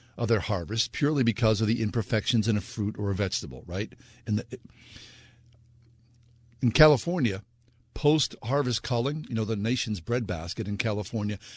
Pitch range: 105-125 Hz